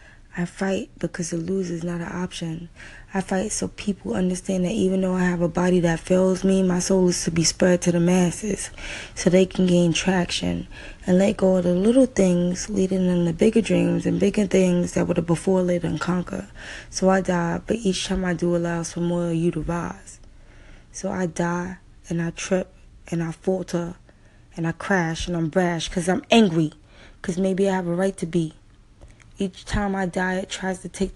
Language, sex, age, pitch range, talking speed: English, female, 20-39, 170-190 Hz, 210 wpm